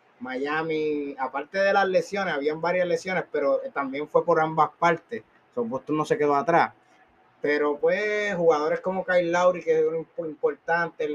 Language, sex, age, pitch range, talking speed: Spanish, male, 30-49, 160-265 Hz, 155 wpm